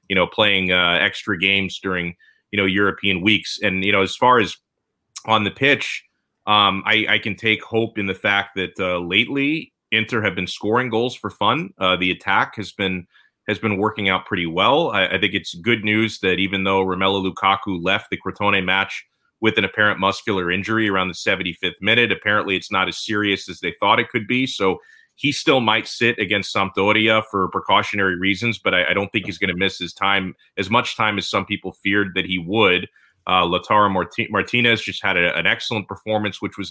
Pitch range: 95-110 Hz